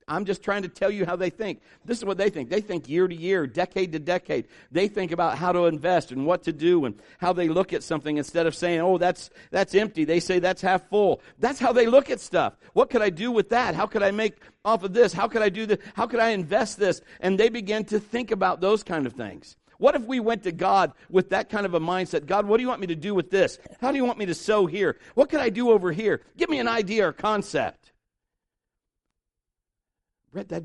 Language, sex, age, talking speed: English, male, 50-69, 260 wpm